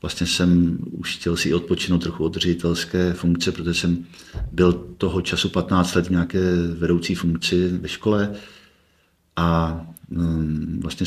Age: 50-69